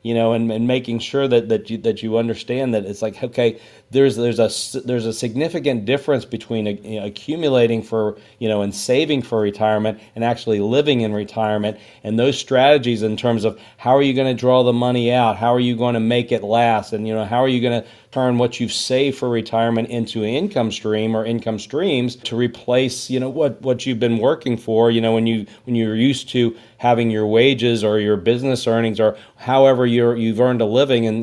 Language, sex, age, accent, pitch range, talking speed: English, male, 40-59, American, 110-125 Hz, 225 wpm